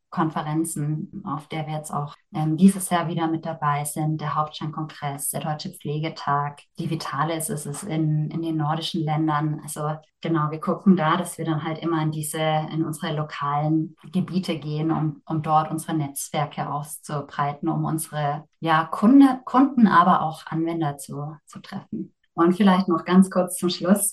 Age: 20-39